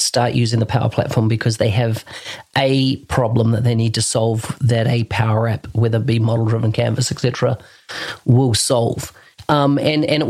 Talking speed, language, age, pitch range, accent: 185 wpm, English, 40-59, 120-140 Hz, Australian